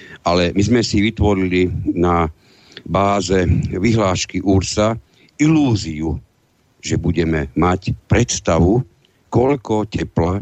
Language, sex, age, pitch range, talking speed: Slovak, male, 60-79, 90-110 Hz, 90 wpm